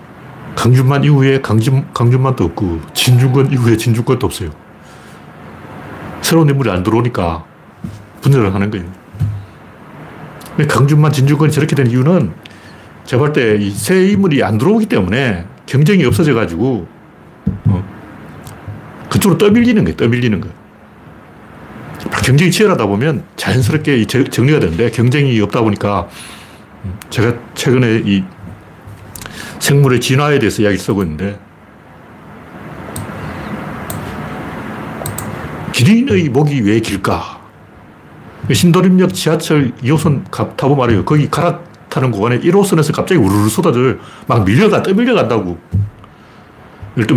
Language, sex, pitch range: Korean, male, 105-155 Hz